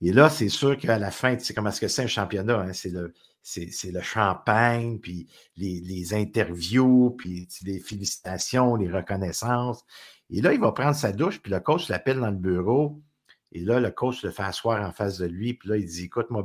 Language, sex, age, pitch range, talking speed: French, male, 50-69, 100-135 Hz, 230 wpm